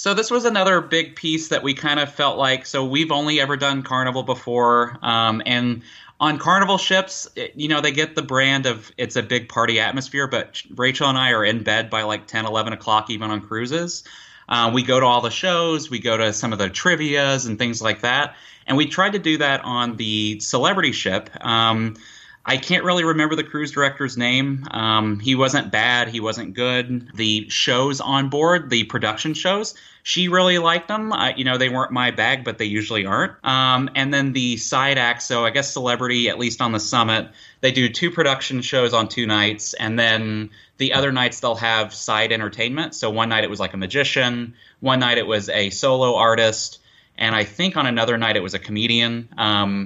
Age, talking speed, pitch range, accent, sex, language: 30-49, 210 wpm, 110-140 Hz, American, male, English